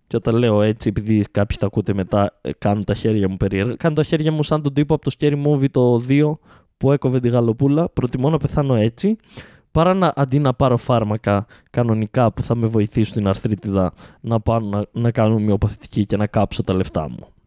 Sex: male